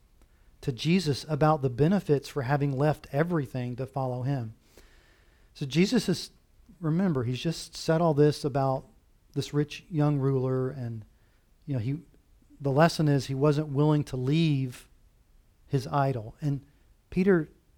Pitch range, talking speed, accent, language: 125-165 Hz, 140 wpm, American, English